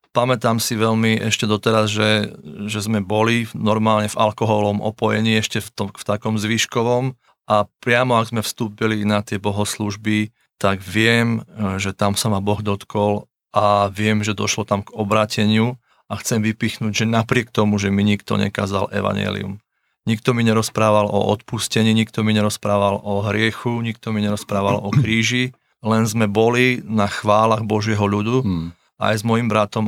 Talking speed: 160 wpm